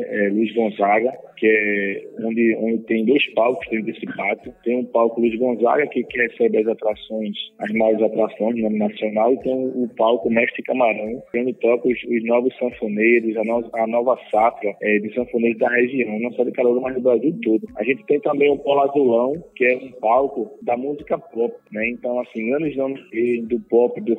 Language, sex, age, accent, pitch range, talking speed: Portuguese, male, 20-39, Brazilian, 110-125 Hz, 215 wpm